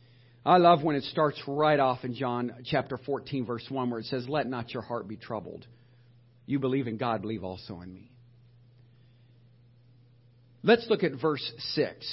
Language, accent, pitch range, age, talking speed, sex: English, American, 120-175 Hz, 50-69, 175 wpm, male